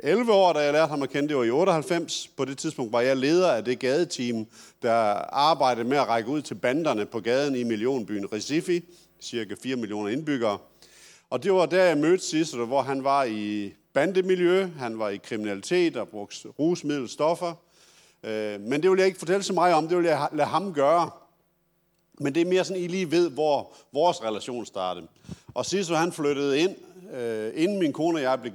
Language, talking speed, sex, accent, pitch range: Danish, 205 wpm, male, native, 115-170 Hz